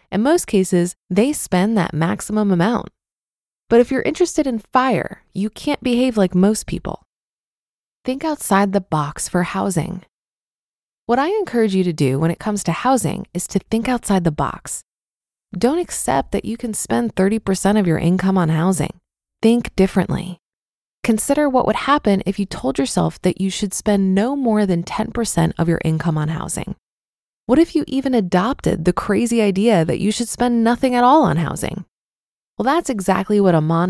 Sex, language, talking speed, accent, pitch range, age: female, English, 175 wpm, American, 170-235 Hz, 20-39